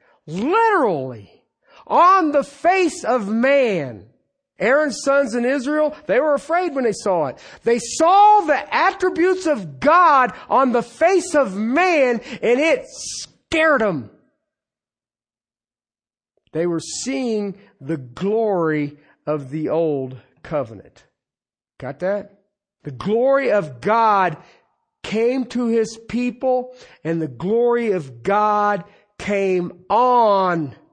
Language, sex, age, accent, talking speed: English, male, 50-69, American, 115 wpm